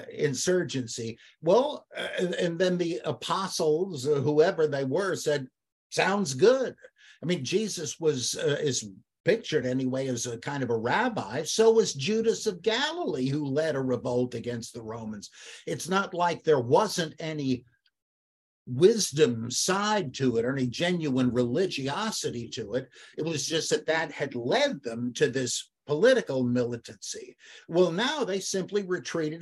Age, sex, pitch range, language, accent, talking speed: 50-69, male, 130-190 Hz, English, American, 145 wpm